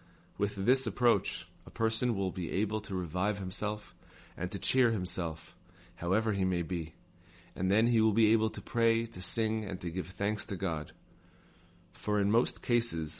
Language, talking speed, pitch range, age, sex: English, 175 wpm, 90-110 Hz, 30-49, male